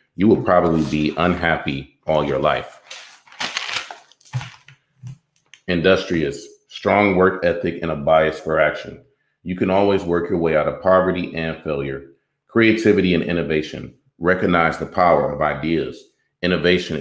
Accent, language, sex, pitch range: American, English, male, 80-95 Hz